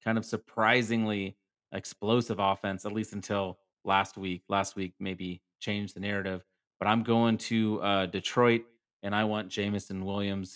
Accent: American